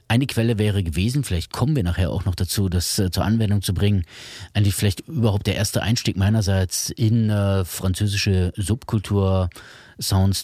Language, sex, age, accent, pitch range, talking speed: German, male, 30-49, German, 90-105 Hz, 155 wpm